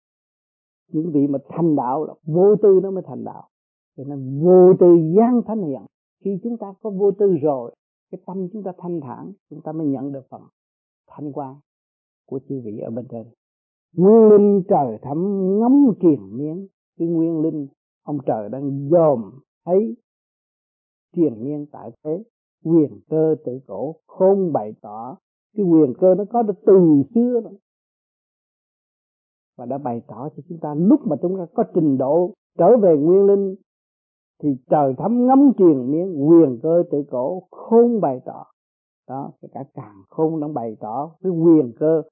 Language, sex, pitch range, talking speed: Vietnamese, male, 140-200 Hz, 175 wpm